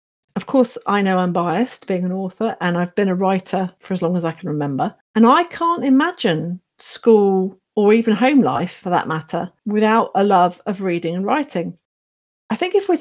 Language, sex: English, female